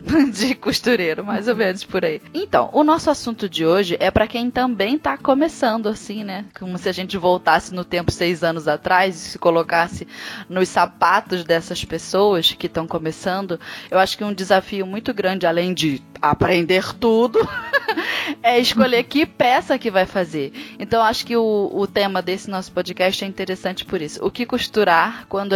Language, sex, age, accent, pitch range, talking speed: Portuguese, female, 10-29, Brazilian, 180-230 Hz, 180 wpm